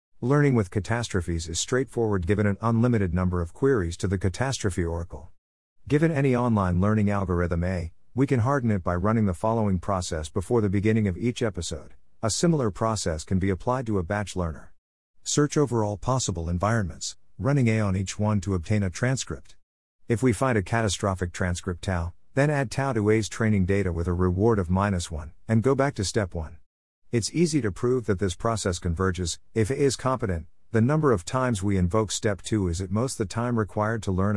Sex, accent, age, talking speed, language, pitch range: male, American, 50-69, 200 wpm, English, 90-115 Hz